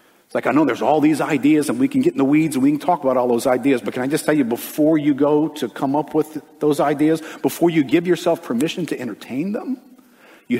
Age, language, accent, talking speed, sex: 50-69, English, American, 260 wpm, male